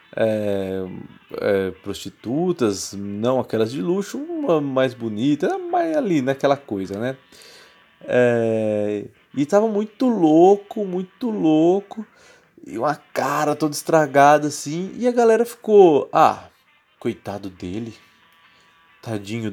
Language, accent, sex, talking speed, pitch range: Portuguese, Brazilian, male, 115 wpm, 115-185 Hz